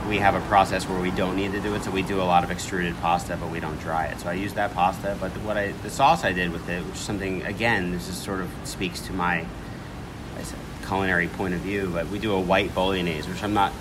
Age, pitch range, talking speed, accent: 30-49, 85-100 Hz, 280 wpm, American